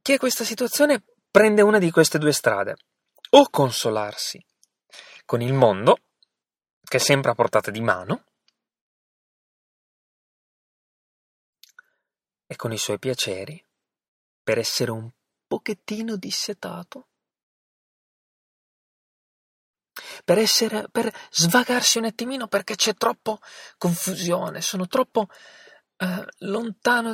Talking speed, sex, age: 95 wpm, male, 30-49